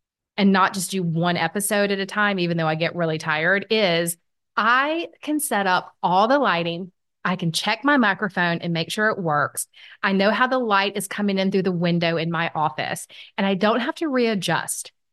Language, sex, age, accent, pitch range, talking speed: English, female, 30-49, American, 175-225 Hz, 210 wpm